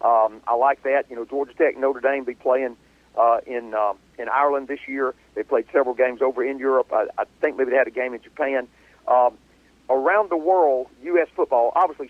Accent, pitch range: American, 120-160 Hz